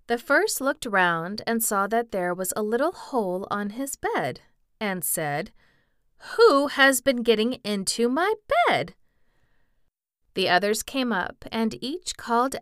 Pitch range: 185-245 Hz